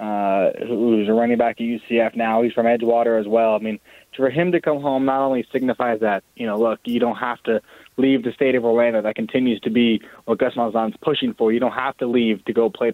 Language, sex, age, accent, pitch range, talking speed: English, male, 20-39, American, 115-140 Hz, 245 wpm